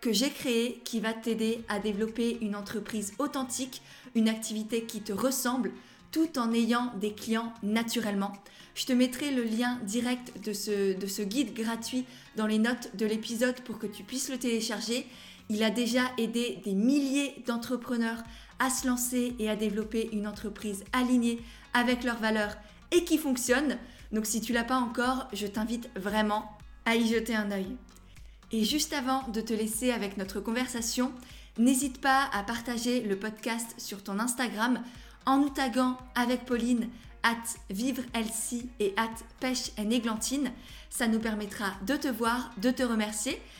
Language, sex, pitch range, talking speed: French, female, 220-250 Hz, 165 wpm